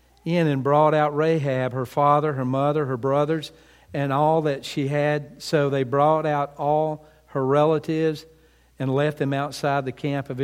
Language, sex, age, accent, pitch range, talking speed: English, male, 50-69, American, 130-155 Hz, 170 wpm